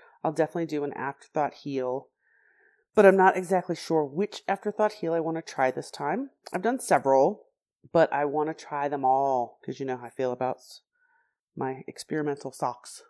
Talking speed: 185 wpm